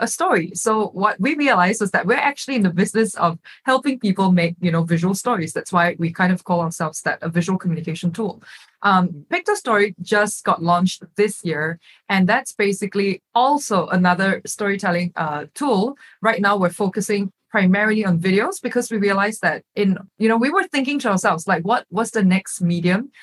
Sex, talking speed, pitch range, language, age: female, 190 wpm, 175-220 Hz, English, 20-39